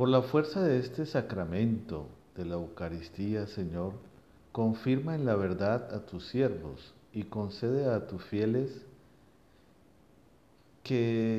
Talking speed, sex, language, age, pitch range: 120 wpm, male, English, 50-69, 95-125 Hz